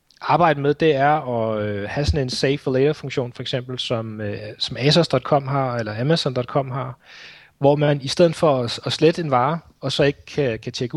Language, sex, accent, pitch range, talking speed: Danish, male, native, 125-155 Hz, 215 wpm